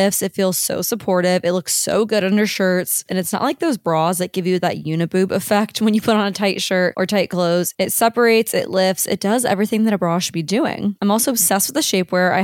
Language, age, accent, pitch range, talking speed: English, 20-39, American, 185-225 Hz, 250 wpm